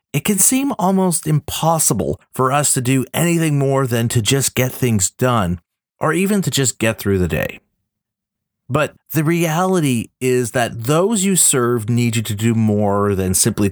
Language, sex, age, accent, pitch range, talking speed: English, male, 40-59, American, 105-150 Hz, 175 wpm